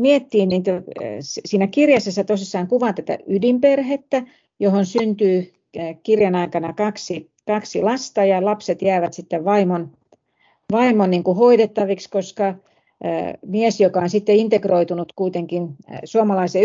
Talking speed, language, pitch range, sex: 110 wpm, Finnish, 175-210 Hz, female